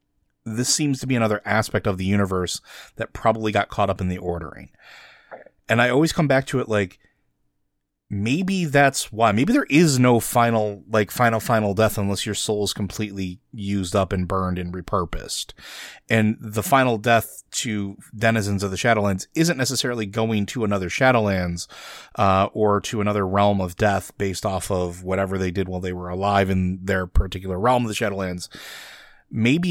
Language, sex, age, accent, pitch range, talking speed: English, male, 30-49, American, 95-115 Hz, 180 wpm